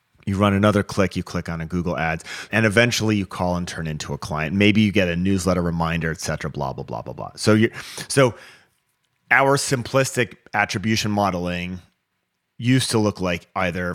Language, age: English, 30-49